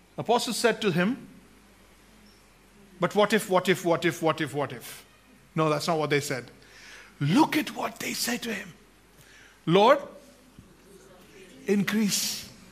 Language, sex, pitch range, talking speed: English, male, 145-215 Hz, 140 wpm